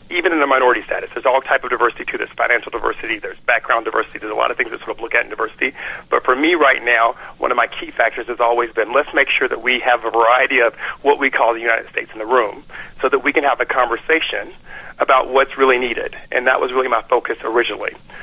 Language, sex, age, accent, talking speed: English, male, 40-59, American, 255 wpm